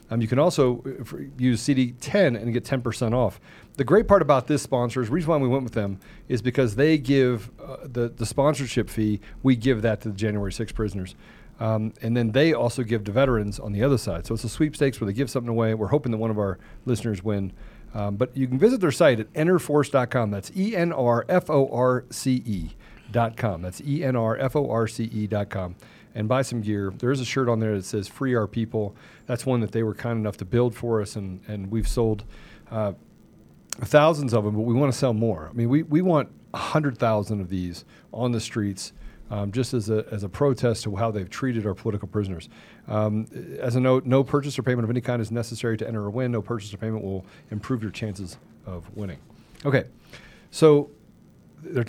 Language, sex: English, male